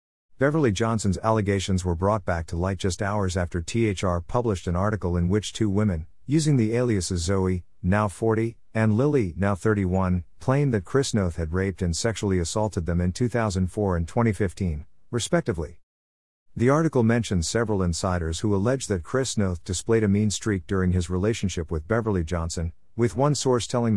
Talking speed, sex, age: 170 wpm, male, 50-69